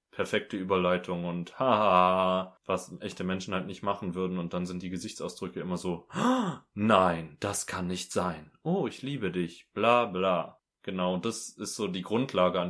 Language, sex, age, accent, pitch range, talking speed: German, male, 20-39, German, 90-125 Hz, 170 wpm